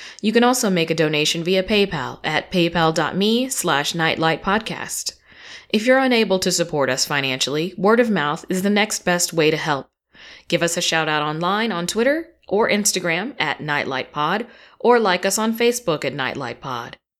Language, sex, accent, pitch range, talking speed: English, female, American, 155-205 Hz, 165 wpm